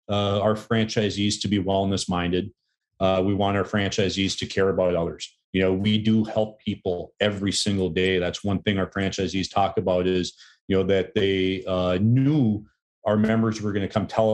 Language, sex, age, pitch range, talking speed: English, male, 40-59, 95-110 Hz, 195 wpm